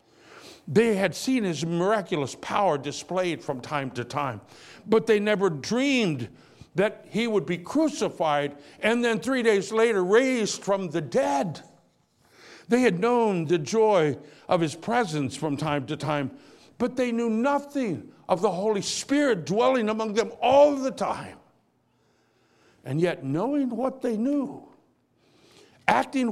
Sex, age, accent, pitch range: male, 60-79, American, 150-230 Hz